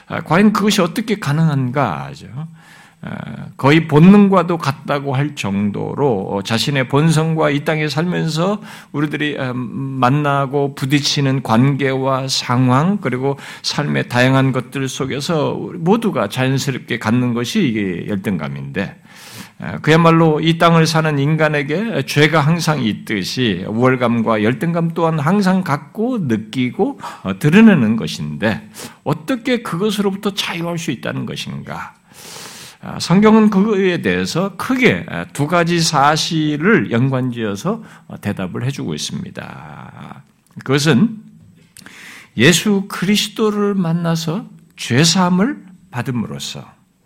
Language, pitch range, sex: Korean, 135-185 Hz, male